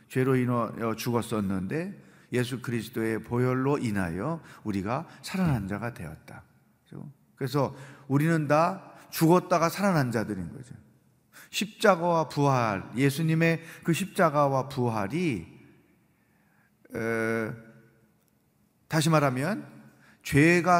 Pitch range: 120-160 Hz